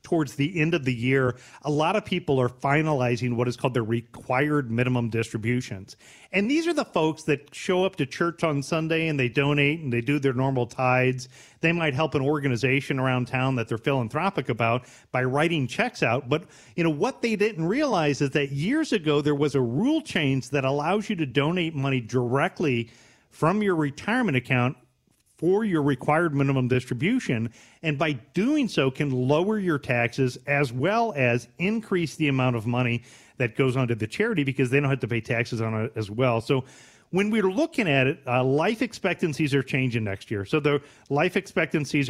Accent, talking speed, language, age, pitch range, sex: American, 195 wpm, English, 40-59, 125-160 Hz, male